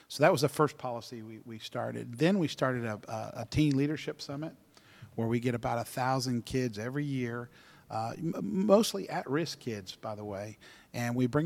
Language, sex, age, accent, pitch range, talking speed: English, male, 50-69, American, 115-135 Hz, 185 wpm